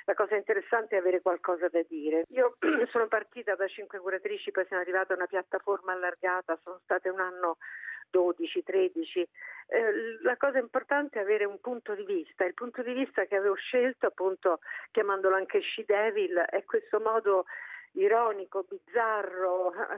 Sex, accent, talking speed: female, native, 160 wpm